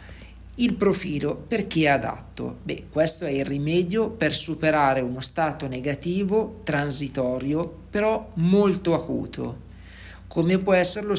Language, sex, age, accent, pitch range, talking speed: Italian, male, 50-69, native, 140-180 Hz, 125 wpm